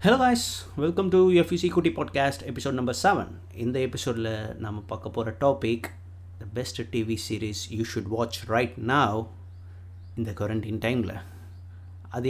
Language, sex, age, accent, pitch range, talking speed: Tamil, male, 30-49, native, 105-125 Hz, 140 wpm